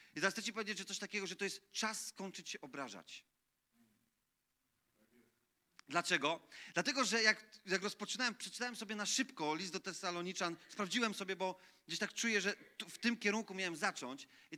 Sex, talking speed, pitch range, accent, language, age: male, 170 wpm, 180-225 Hz, native, Polish, 30-49